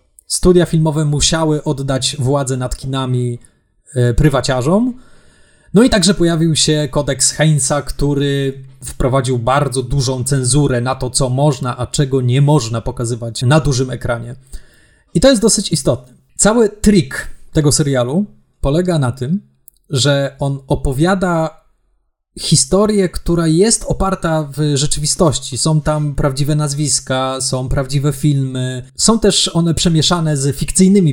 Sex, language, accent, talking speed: male, Polish, native, 125 wpm